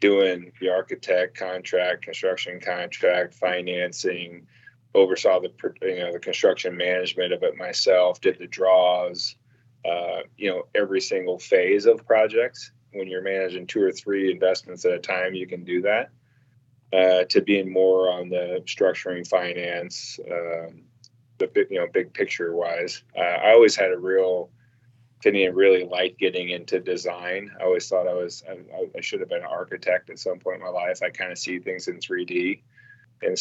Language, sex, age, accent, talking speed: English, male, 20-39, American, 170 wpm